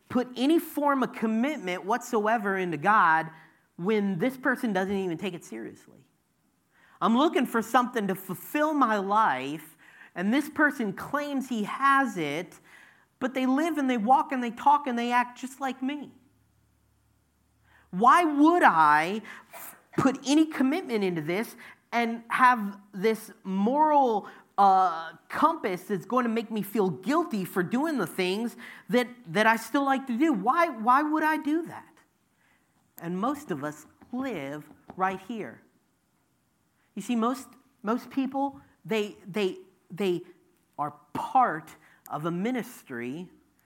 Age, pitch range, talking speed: 40-59, 185-260 Hz, 145 wpm